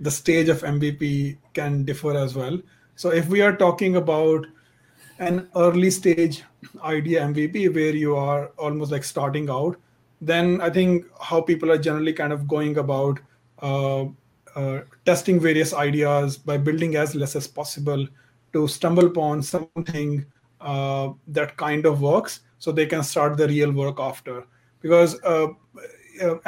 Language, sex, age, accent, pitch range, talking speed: English, male, 30-49, Indian, 140-170 Hz, 150 wpm